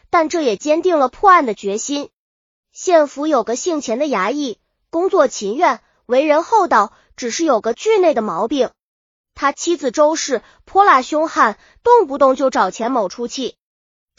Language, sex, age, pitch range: Chinese, female, 20-39, 255-355 Hz